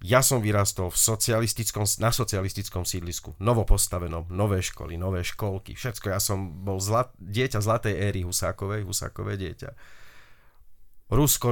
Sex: male